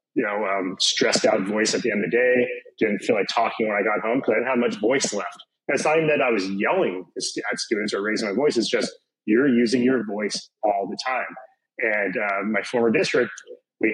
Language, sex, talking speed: English, male, 240 wpm